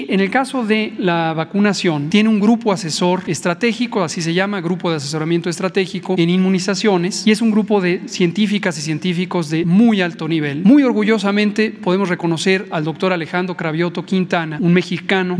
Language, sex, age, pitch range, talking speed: Spanish, male, 40-59, 170-205 Hz, 170 wpm